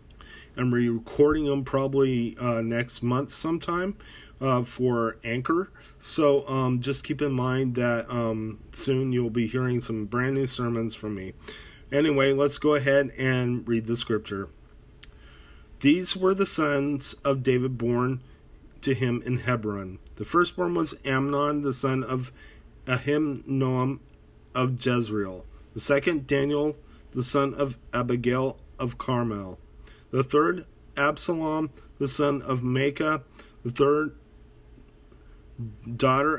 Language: English